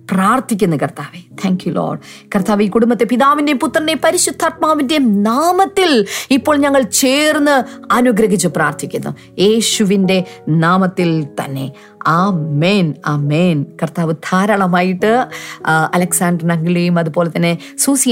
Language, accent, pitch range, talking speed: Malayalam, native, 180-250 Hz, 95 wpm